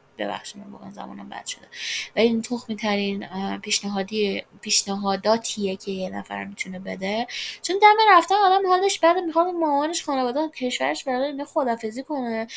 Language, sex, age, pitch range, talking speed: Persian, female, 10-29, 195-280 Hz, 125 wpm